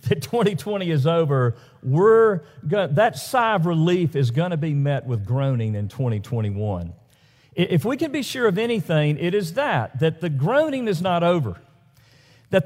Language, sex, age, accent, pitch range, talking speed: English, male, 50-69, American, 130-205 Hz, 165 wpm